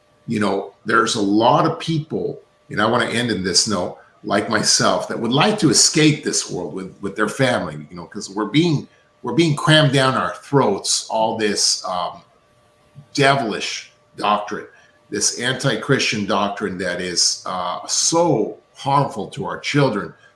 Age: 40-59